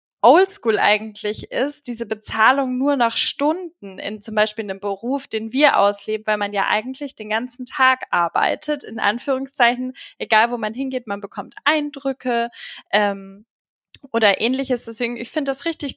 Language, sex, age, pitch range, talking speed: German, female, 10-29, 220-275 Hz, 155 wpm